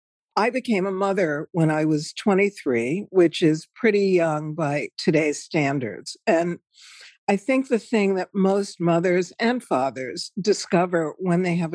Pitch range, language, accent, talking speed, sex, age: 165-205 Hz, English, American, 150 wpm, female, 60-79